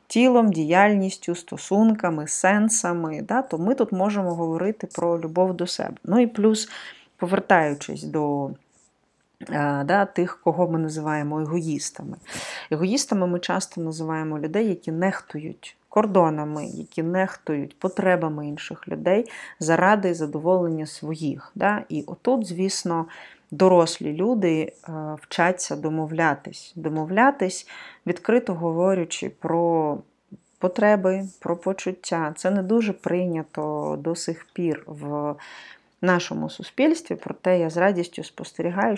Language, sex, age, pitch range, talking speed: Ukrainian, female, 30-49, 160-195 Hz, 110 wpm